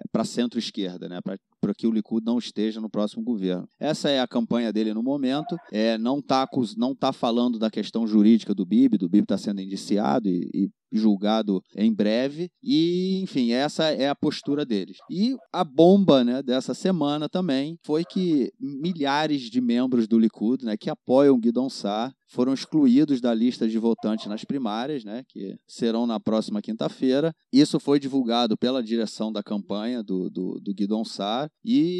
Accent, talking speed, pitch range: Brazilian, 175 wpm, 110-165 Hz